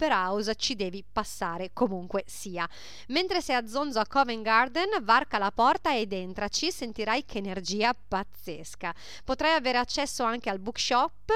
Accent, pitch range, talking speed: native, 205-265 Hz, 150 wpm